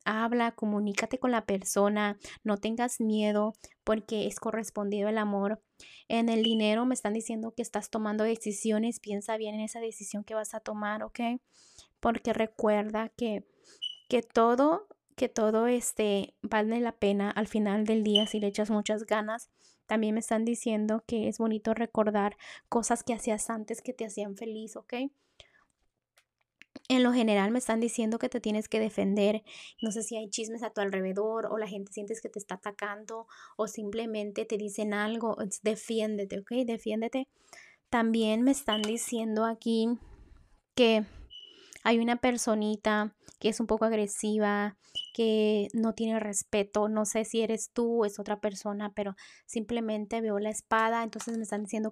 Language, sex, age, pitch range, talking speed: Spanish, female, 20-39, 210-230 Hz, 165 wpm